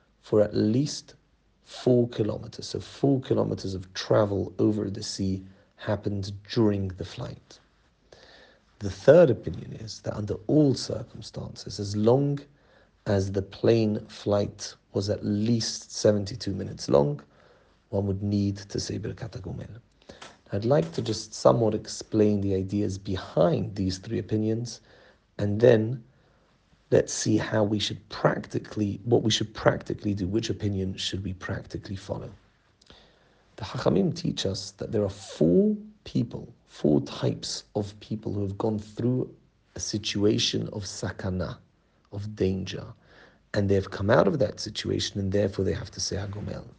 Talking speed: 140 wpm